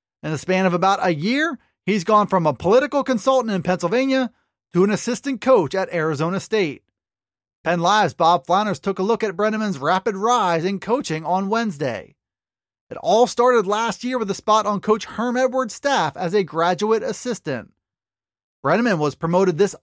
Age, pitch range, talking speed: 30-49, 175-230 Hz, 175 wpm